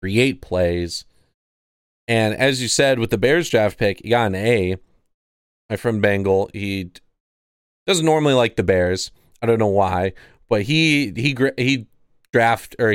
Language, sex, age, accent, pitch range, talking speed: English, male, 30-49, American, 100-135 Hz, 160 wpm